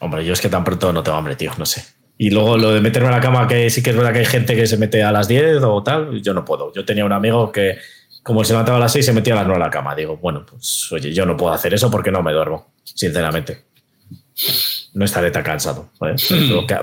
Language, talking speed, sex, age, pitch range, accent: Spanish, 280 wpm, male, 20-39, 95-125 Hz, Spanish